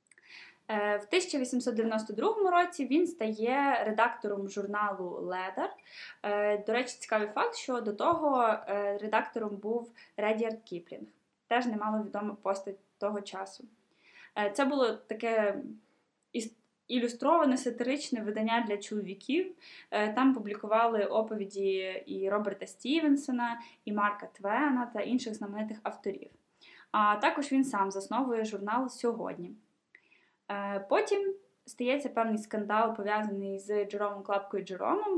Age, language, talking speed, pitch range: 10-29, Ukrainian, 105 wpm, 205-260 Hz